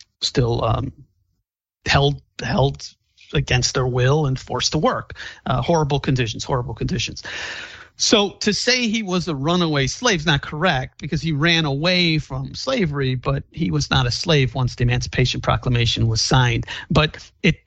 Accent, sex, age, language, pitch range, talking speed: American, male, 50-69, English, 120-155 Hz, 160 wpm